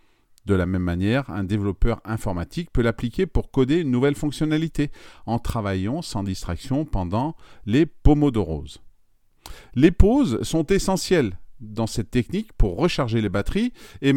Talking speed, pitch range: 145 wpm, 105-145 Hz